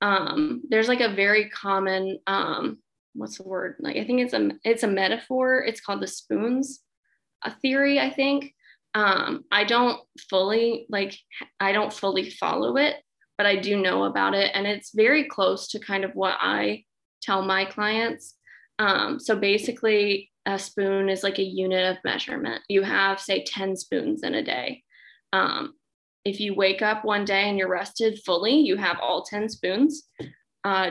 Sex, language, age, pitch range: female, English, 20-39, 190-230 Hz